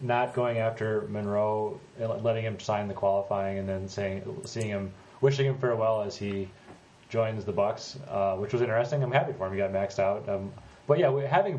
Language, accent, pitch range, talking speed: English, American, 100-130 Hz, 200 wpm